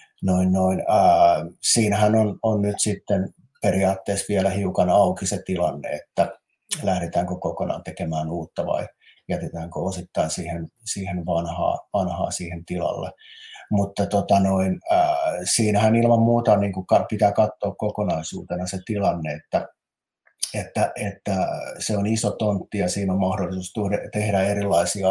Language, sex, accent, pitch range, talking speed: Finnish, male, native, 90-105 Hz, 115 wpm